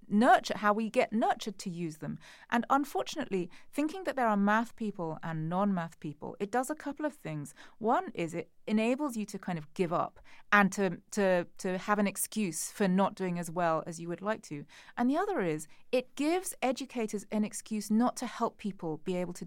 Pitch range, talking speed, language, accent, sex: 175-230 Hz, 210 wpm, English, British, female